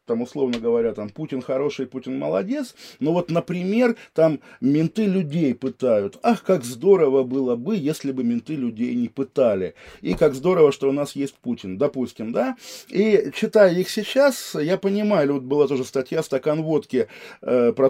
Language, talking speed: Russian, 165 wpm